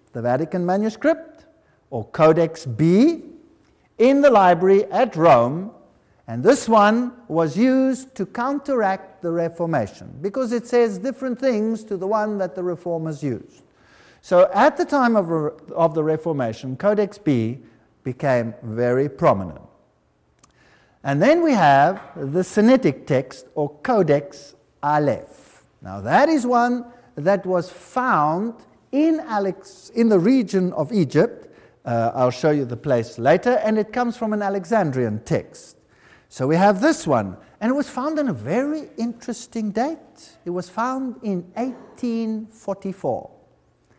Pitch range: 155-250 Hz